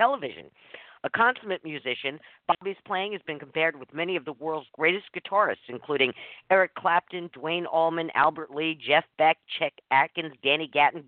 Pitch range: 140-180 Hz